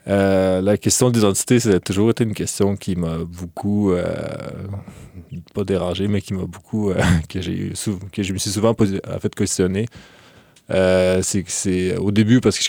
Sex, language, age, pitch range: male, French, 20-39, 95-105 Hz